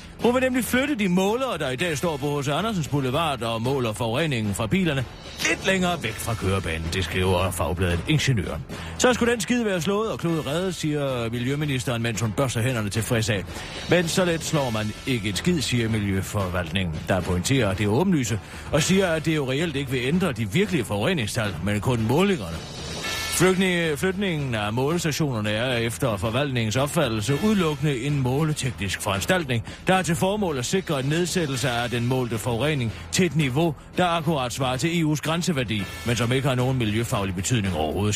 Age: 40-59